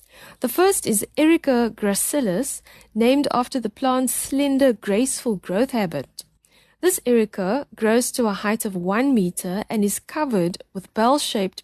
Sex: female